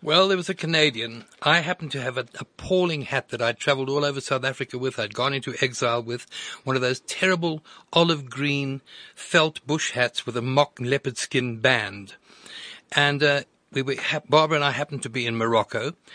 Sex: male